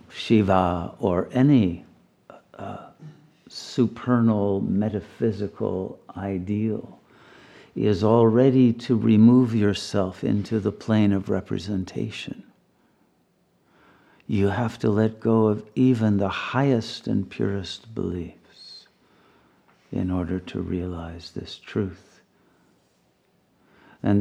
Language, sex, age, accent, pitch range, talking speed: English, male, 60-79, American, 90-110 Hz, 90 wpm